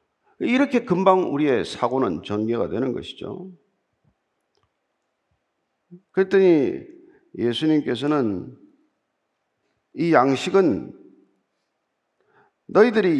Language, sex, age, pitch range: Korean, male, 50-69, 155-260 Hz